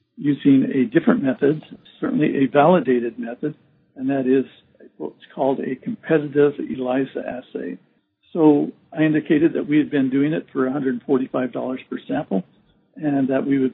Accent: American